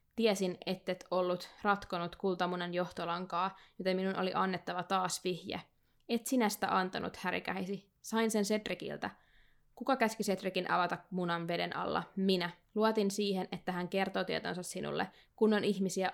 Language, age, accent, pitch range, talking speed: Finnish, 20-39, native, 185-215 Hz, 140 wpm